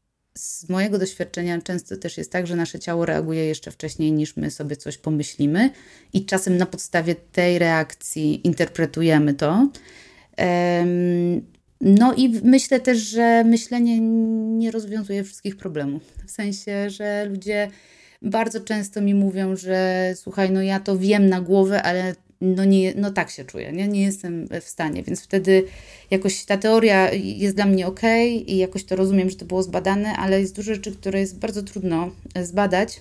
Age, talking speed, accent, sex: 20-39, 165 wpm, native, female